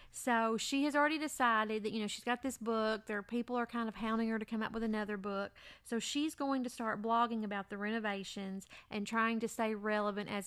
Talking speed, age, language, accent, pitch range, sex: 235 wpm, 30-49, English, American, 200-230 Hz, female